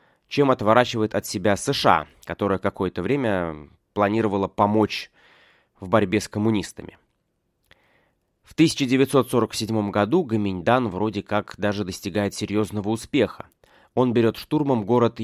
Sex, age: male, 20-39